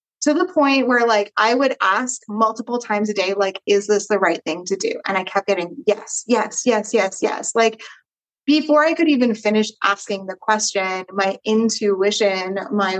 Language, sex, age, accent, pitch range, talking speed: English, female, 20-39, American, 185-220 Hz, 190 wpm